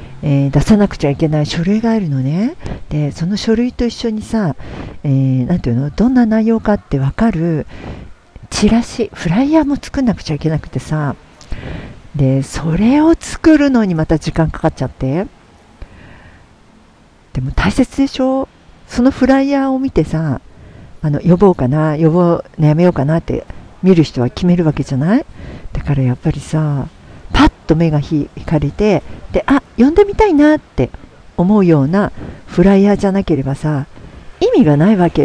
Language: Japanese